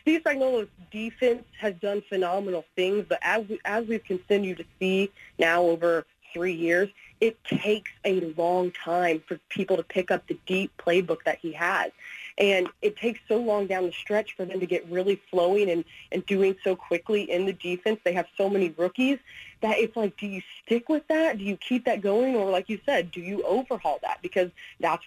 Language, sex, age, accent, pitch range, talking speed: English, female, 20-39, American, 180-225 Hz, 200 wpm